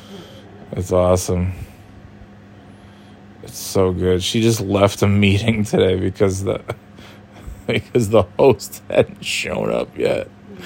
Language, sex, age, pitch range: English, male, 20-39, 100-115 Hz